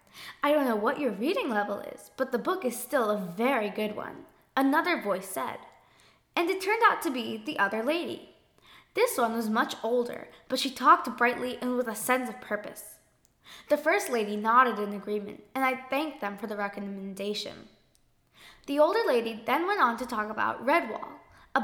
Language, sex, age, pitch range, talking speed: English, female, 10-29, 220-320 Hz, 190 wpm